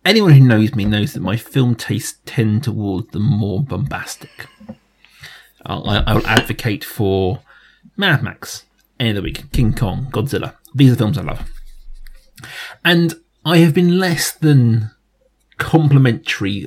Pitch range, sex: 115-145 Hz, male